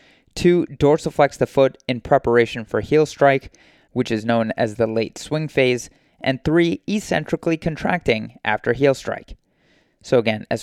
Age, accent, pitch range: 30-49, American, 115-150 Hz